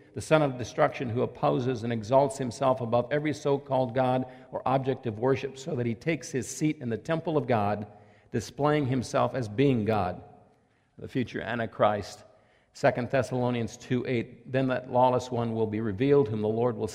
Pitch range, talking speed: 115-135 Hz, 180 wpm